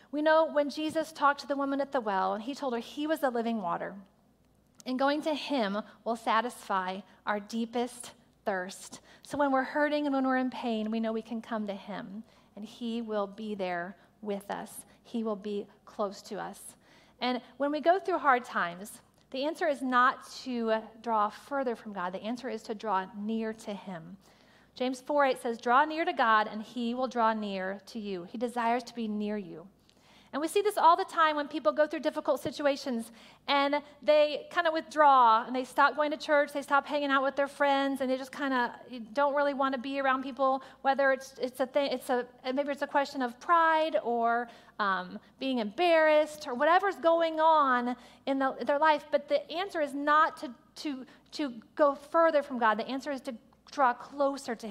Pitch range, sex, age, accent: 225-290 Hz, female, 40-59, American